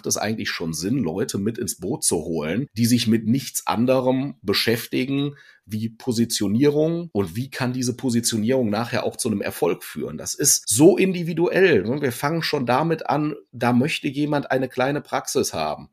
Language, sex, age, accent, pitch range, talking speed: German, male, 30-49, German, 115-150 Hz, 170 wpm